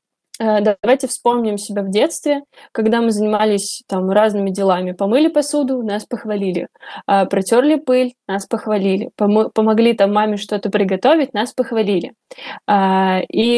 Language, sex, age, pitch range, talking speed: Russian, female, 20-39, 200-250 Hz, 120 wpm